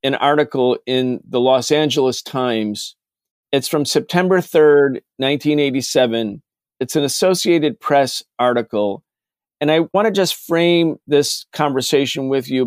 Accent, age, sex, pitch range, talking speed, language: American, 50-69, male, 135-160 Hz, 130 wpm, English